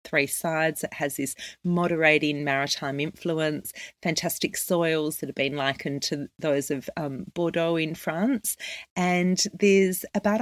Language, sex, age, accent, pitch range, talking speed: English, female, 40-59, Australian, 150-180 Hz, 140 wpm